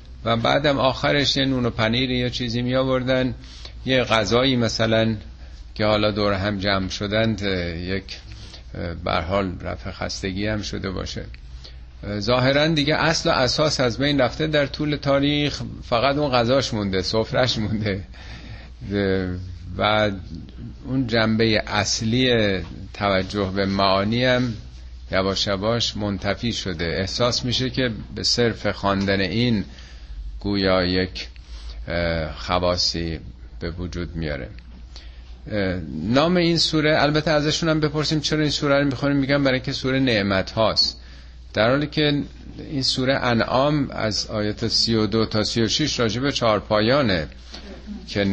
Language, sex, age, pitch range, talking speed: Persian, male, 50-69, 95-130 Hz, 125 wpm